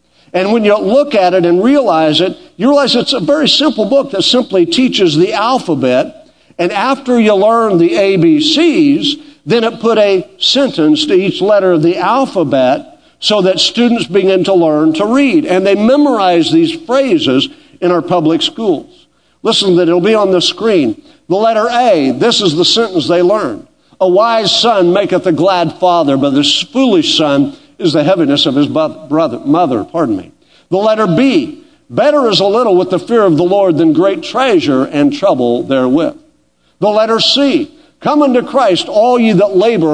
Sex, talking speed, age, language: male, 180 wpm, 50-69, English